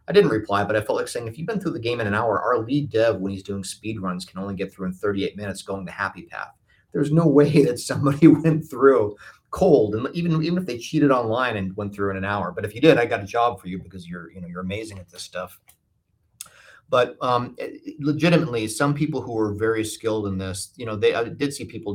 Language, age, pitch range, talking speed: English, 30-49, 95-120 Hz, 255 wpm